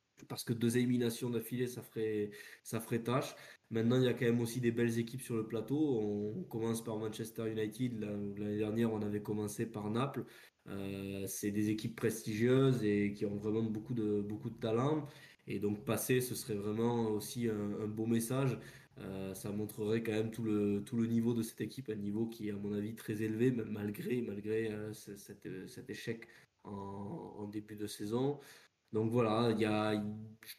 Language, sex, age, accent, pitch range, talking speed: French, male, 20-39, French, 105-120 Hz, 195 wpm